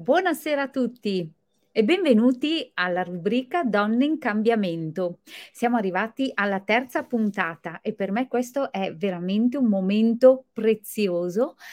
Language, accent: Italian, native